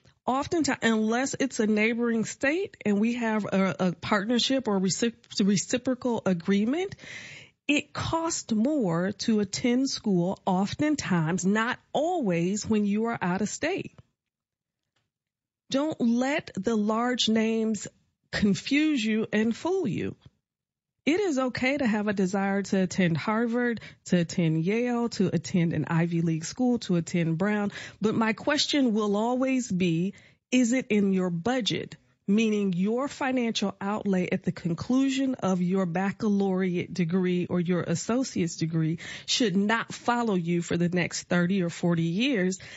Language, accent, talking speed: English, American, 140 wpm